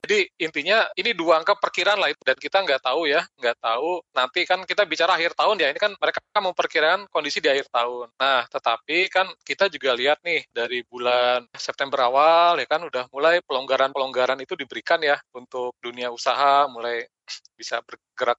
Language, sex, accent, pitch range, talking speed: Indonesian, male, native, 135-185 Hz, 180 wpm